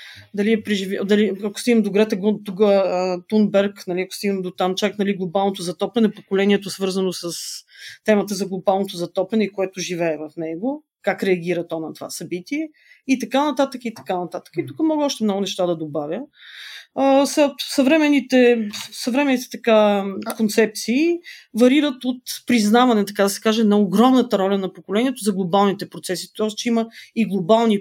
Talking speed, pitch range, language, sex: 160 wpm, 195-245 Hz, Bulgarian, female